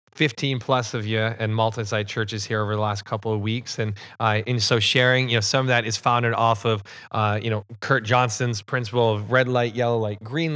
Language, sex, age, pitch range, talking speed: English, male, 30-49, 115-135 Hz, 225 wpm